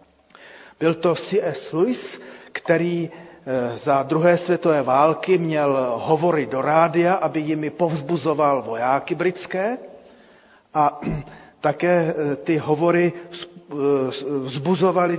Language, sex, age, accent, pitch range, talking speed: Czech, male, 40-59, native, 140-175 Hz, 90 wpm